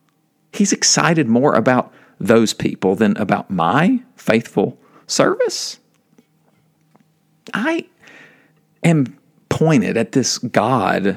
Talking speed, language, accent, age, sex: 90 wpm, English, American, 50-69, male